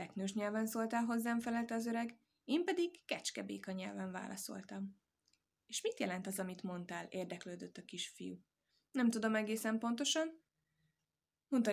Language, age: Hungarian, 20-39